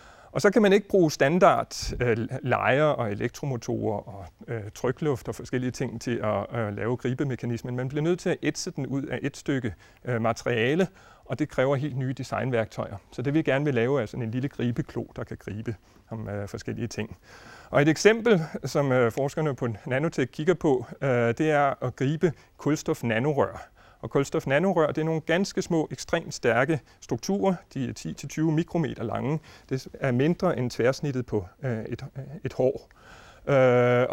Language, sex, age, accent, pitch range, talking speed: Danish, male, 30-49, native, 120-160 Hz, 175 wpm